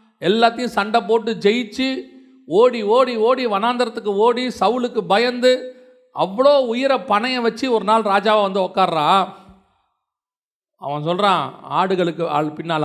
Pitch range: 190-265 Hz